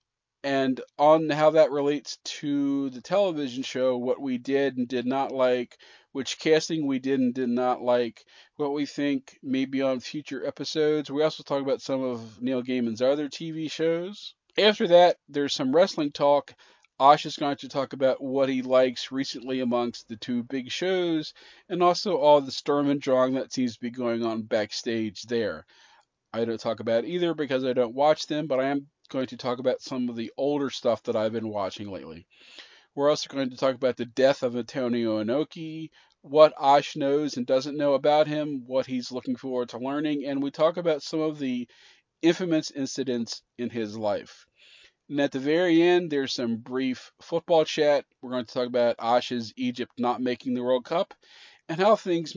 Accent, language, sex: American, English, male